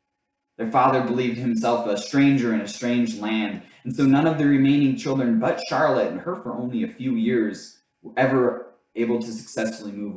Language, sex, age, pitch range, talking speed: English, male, 20-39, 100-130 Hz, 190 wpm